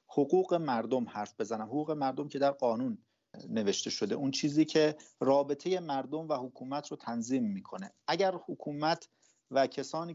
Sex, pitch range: male, 135-185 Hz